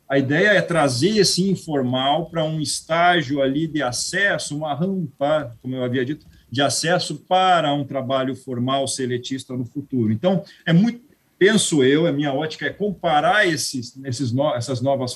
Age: 50-69